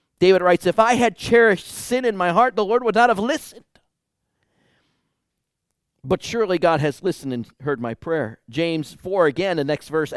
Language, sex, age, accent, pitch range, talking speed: English, male, 40-59, American, 140-200 Hz, 185 wpm